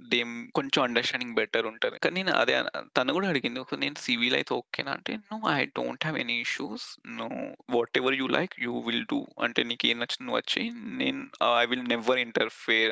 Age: 20-39